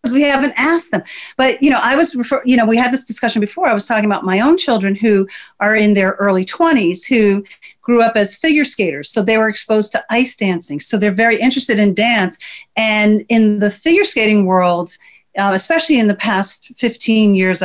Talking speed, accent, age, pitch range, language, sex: 205 wpm, American, 40-59, 195-245 Hz, English, female